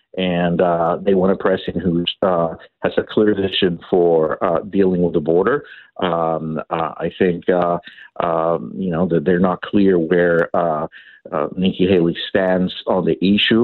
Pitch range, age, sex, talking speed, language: 85-110 Hz, 50-69, male, 165 wpm, English